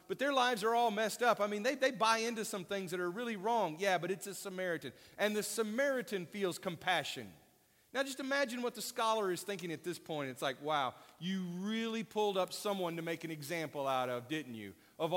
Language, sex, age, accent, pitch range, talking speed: English, male, 40-59, American, 165-225 Hz, 225 wpm